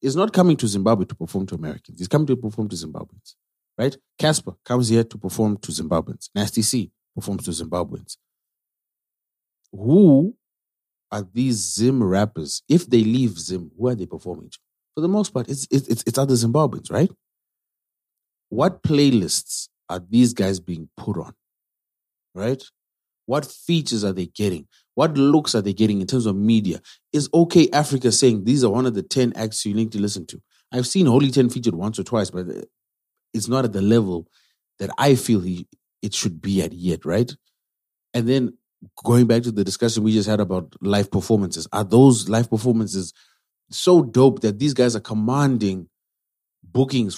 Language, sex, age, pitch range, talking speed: English, male, 30-49, 95-125 Hz, 175 wpm